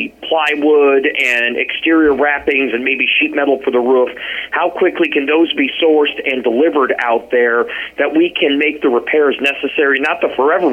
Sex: male